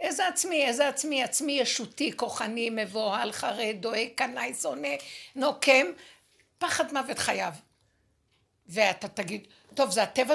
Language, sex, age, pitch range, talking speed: Hebrew, female, 60-79, 220-285 Hz, 120 wpm